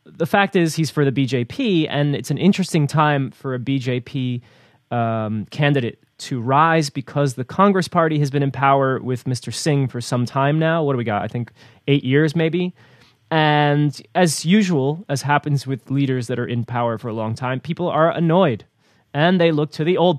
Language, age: English, 20-39